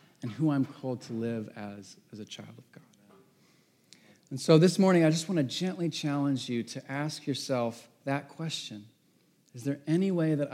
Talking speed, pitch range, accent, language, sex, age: 190 wpm, 120-155 Hz, American, English, male, 40-59